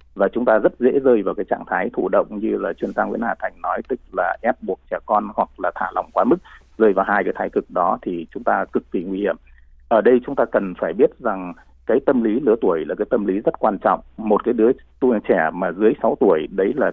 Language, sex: Vietnamese, male